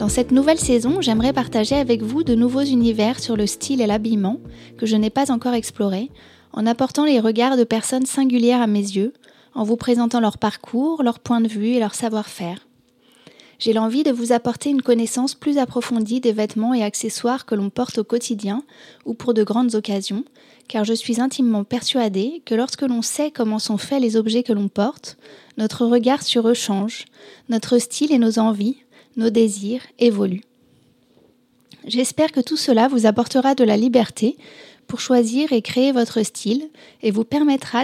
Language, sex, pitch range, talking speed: French, female, 215-255 Hz, 180 wpm